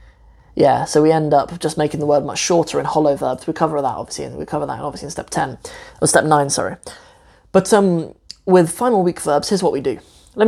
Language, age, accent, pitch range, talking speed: English, 20-39, British, 150-190 Hz, 235 wpm